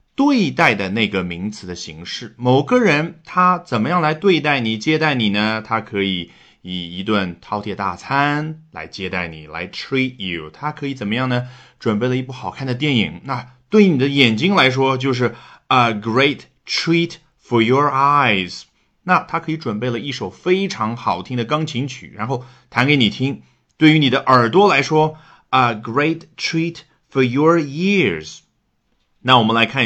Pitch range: 110-160 Hz